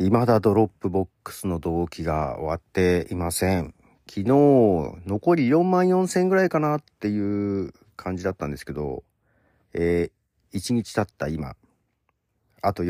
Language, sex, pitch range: Japanese, male, 85-125 Hz